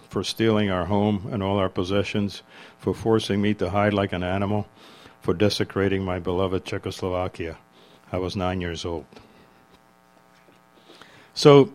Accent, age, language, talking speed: American, 60-79, English, 140 wpm